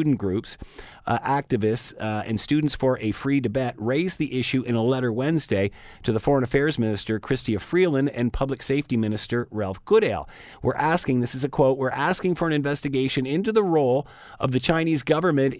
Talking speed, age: 190 wpm, 50-69